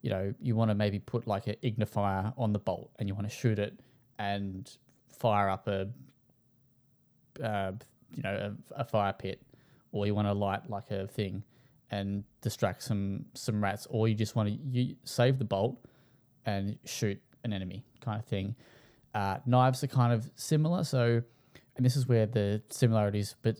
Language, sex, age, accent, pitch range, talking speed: English, male, 10-29, Australian, 100-125 Hz, 185 wpm